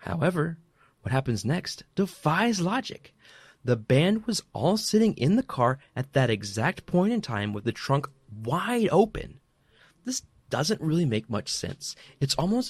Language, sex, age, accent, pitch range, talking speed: English, male, 30-49, American, 110-170 Hz, 155 wpm